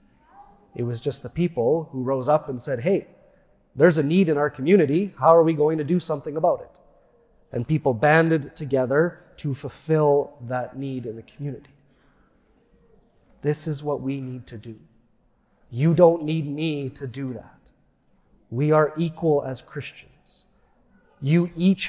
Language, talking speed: English, 160 wpm